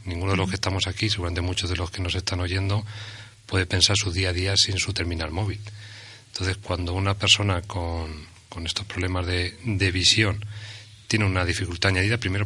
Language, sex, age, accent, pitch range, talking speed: Spanish, male, 40-59, Spanish, 90-105 Hz, 195 wpm